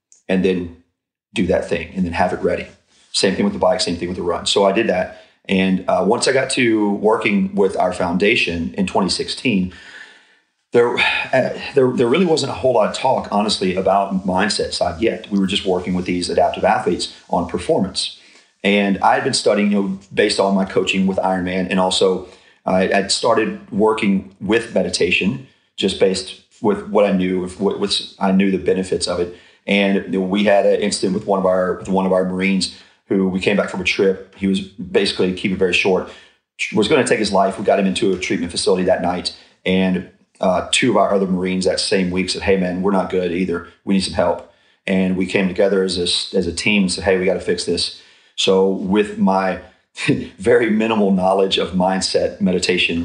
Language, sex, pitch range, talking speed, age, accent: English, male, 90-100 Hz, 210 wpm, 40-59, American